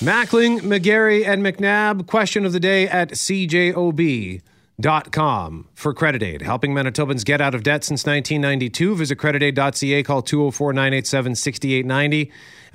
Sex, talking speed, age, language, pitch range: male, 120 wpm, 40-59, English, 135-175 Hz